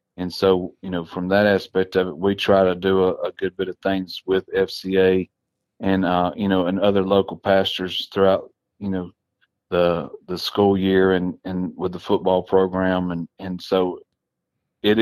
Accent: American